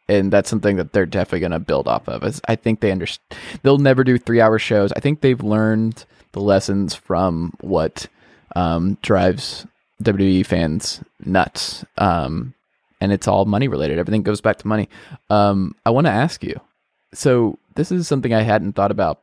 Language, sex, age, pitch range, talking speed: English, male, 20-39, 100-120 Hz, 180 wpm